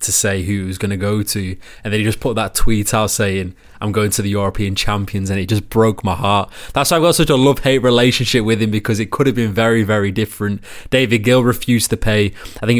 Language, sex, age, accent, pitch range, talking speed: English, male, 20-39, British, 100-120 Hz, 260 wpm